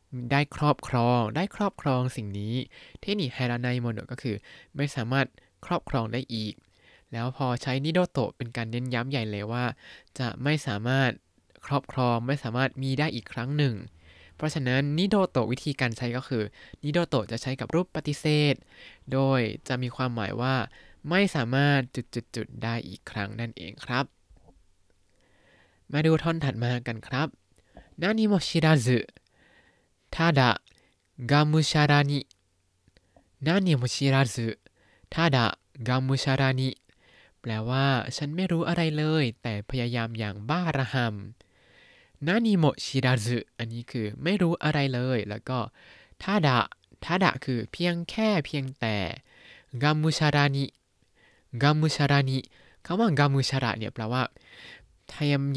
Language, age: Thai, 20-39